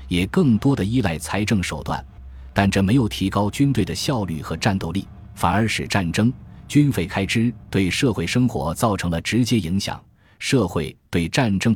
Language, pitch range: Chinese, 90-115 Hz